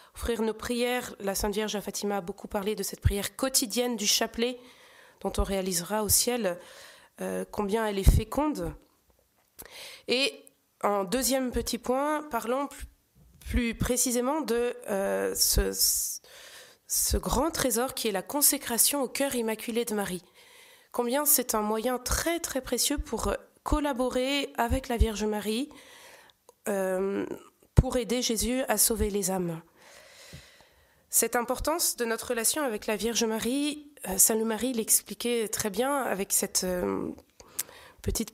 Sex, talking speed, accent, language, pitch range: female, 140 wpm, French, French, 205-270 Hz